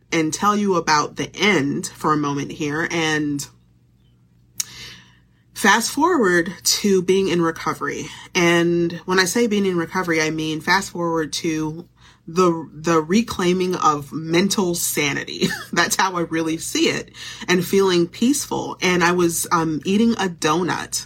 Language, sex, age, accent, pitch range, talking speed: English, female, 30-49, American, 160-205 Hz, 145 wpm